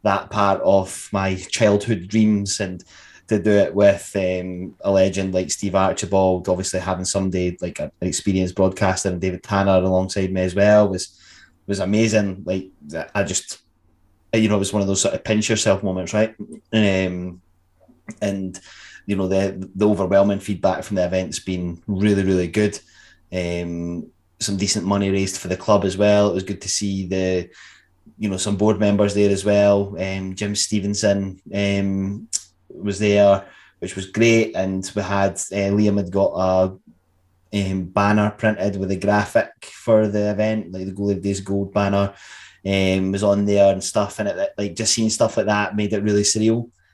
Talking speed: 180 wpm